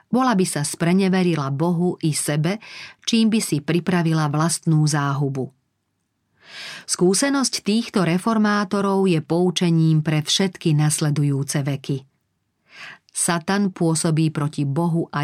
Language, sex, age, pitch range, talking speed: Slovak, female, 40-59, 150-190 Hz, 105 wpm